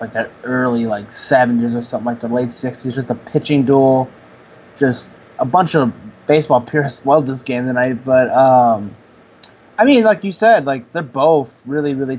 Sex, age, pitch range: male, 20-39, 125-150 Hz